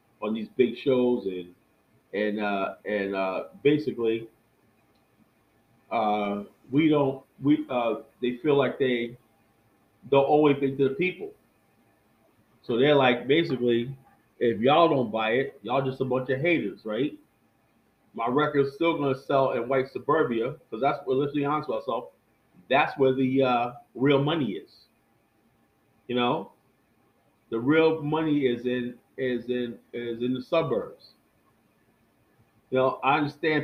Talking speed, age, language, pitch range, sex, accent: 145 wpm, 40-59, English, 115-155 Hz, male, American